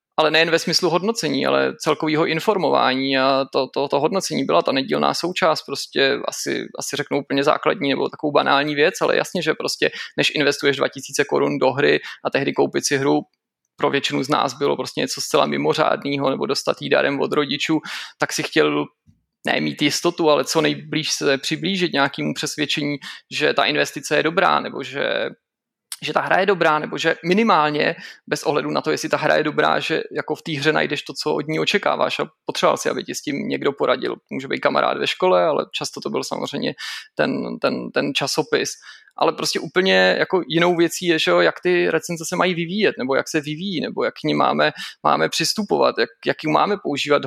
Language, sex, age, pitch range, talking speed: Czech, male, 20-39, 140-180 Hz, 200 wpm